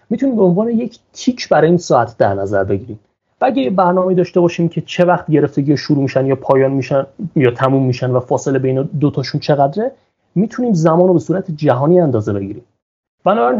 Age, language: 30-49, Persian